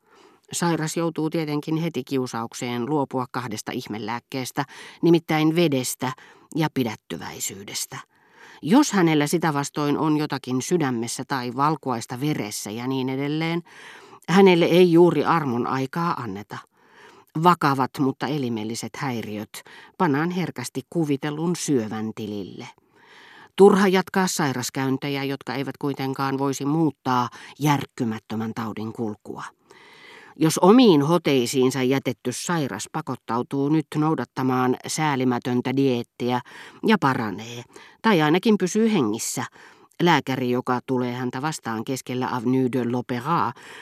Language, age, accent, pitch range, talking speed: Finnish, 40-59, native, 125-165 Hz, 105 wpm